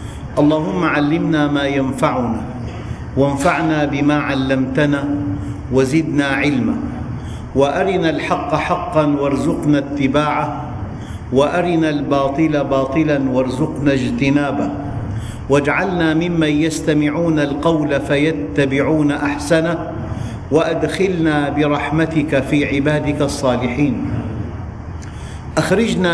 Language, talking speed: Arabic, 70 wpm